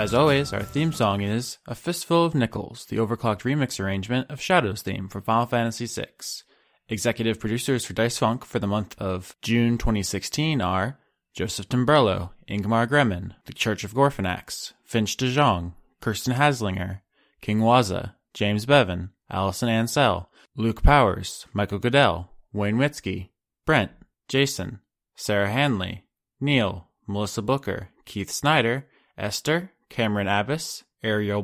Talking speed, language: 135 wpm, English